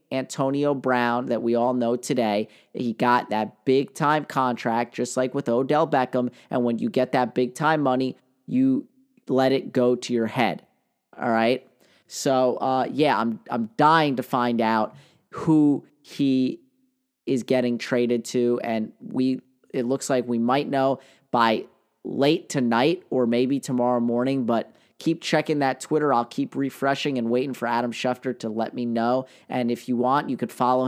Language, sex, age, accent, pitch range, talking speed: English, male, 30-49, American, 120-140 Hz, 175 wpm